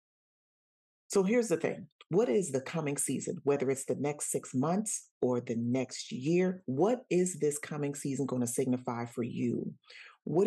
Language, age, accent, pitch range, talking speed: English, 40-59, American, 125-155 Hz, 170 wpm